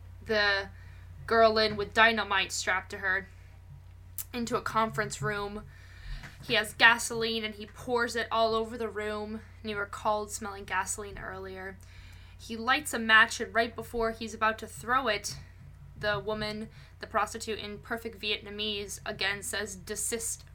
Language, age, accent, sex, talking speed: English, 10-29, American, female, 150 wpm